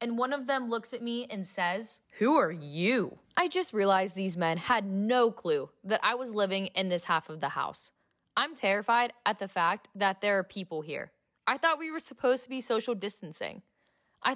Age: 10-29